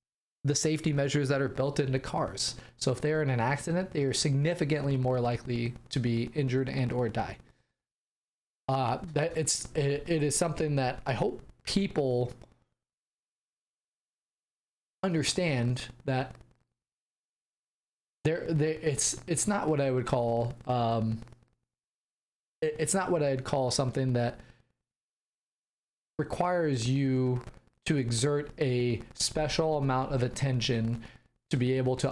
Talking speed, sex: 130 wpm, male